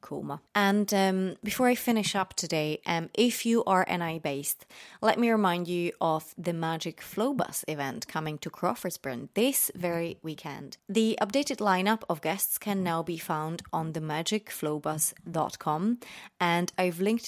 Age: 20-39